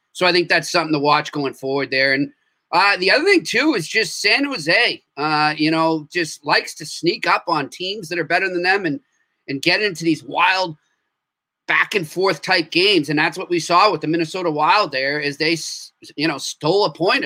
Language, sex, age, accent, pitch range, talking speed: English, male, 30-49, American, 150-175 Hz, 220 wpm